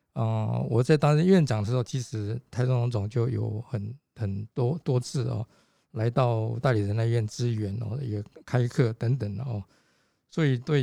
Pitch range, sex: 110-135 Hz, male